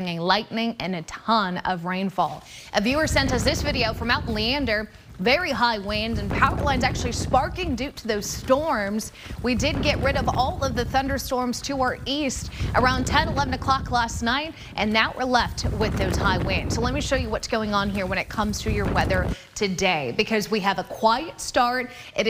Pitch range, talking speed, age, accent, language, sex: 200-255 Hz, 205 wpm, 30-49, American, English, female